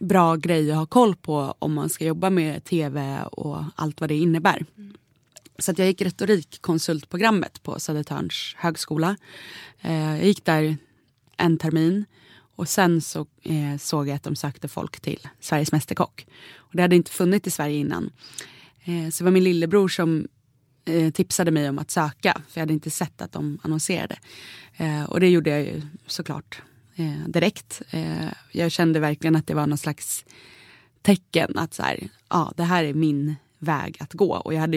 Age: 20-39